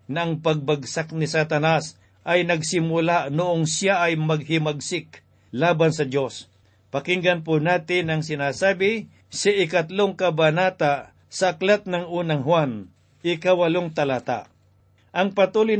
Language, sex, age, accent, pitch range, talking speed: Filipino, male, 50-69, native, 150-180 Hz, 120 wpm